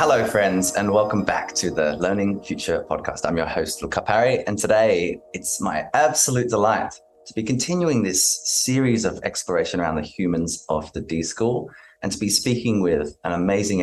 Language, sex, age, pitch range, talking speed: English, male, 20-39, 90-115 Hz, 180 wpm